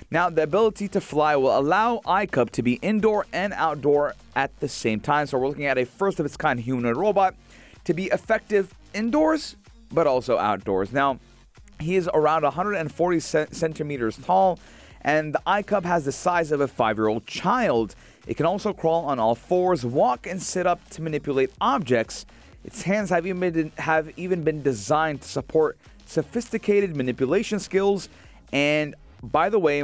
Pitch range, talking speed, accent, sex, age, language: 130-180 Hz, 160 wpm, American, male, 30-49, English